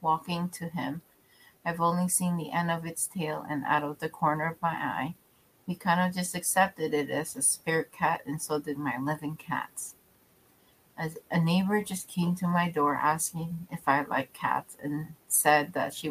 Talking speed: 195 wpm